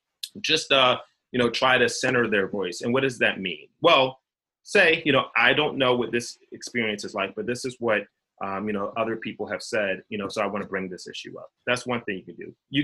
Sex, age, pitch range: male, 30-49, 105-155 Hz